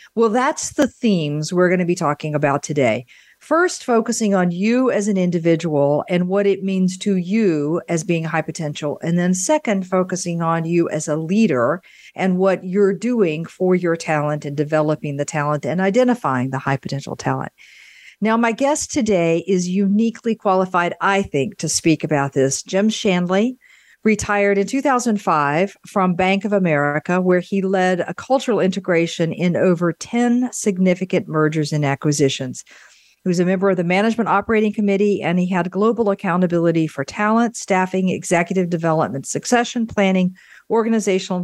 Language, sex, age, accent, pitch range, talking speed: English, female, 50-69, American, 160-205 Hz, 160 wpm